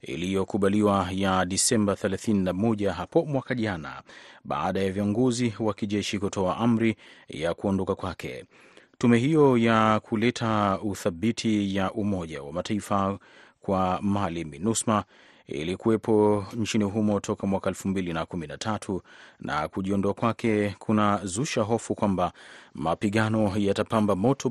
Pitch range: 95-110 Hz